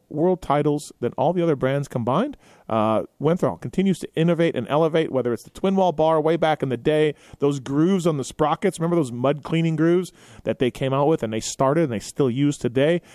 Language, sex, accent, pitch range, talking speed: English, male, American, 130-165 Hz, 225 wpm